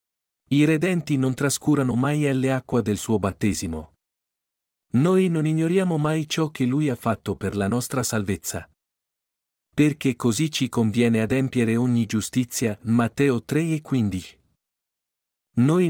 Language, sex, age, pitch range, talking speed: Italian, male, 50-69, 100-140 Hz, 130 wpm